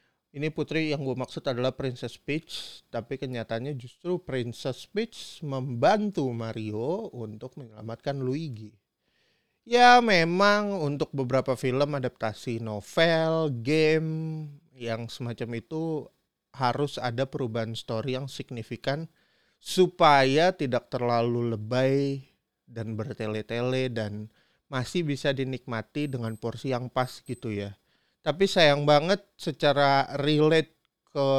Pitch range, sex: 120-160 Hz, male